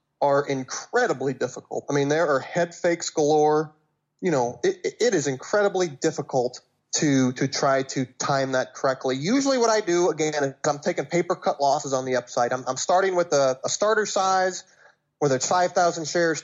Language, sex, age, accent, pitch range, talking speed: English, male, 30-49, American, 135-180 Hz, 185 wpm